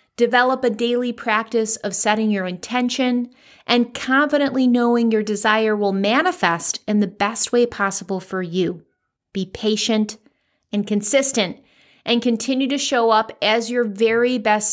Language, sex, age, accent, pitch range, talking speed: English, female, 30-49, American, 205-255 Hz, 145 wpm